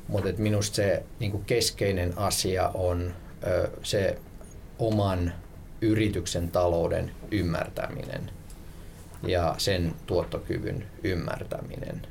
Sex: male